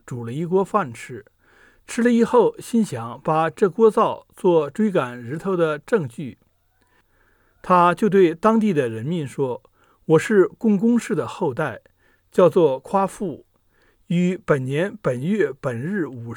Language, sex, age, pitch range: Chinese, male, 60-79, 135-210 Hz